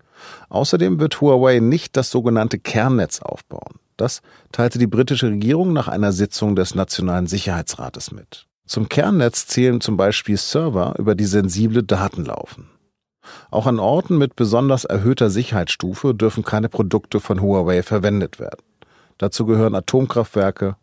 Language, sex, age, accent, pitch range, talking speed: German, male, 50-69, German, 95-125 Hz, 140 wpm